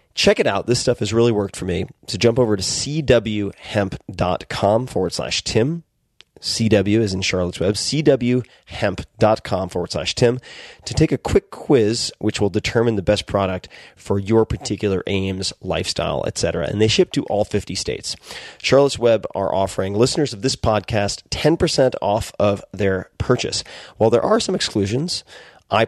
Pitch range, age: 95-120 Hz, 30-49